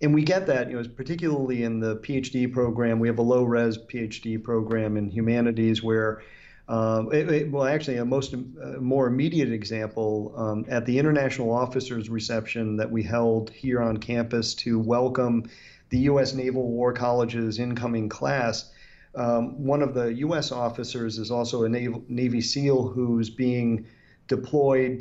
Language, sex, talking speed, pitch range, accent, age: English, male, 160 wpm, 115-130 Hz, American, 40-59